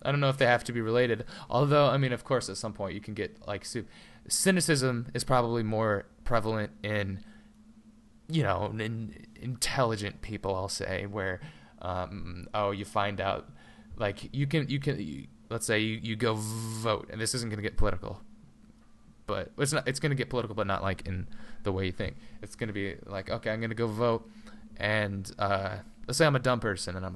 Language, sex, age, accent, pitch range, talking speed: English, male, 20-39, American, 100-120 Hz, 215 wpm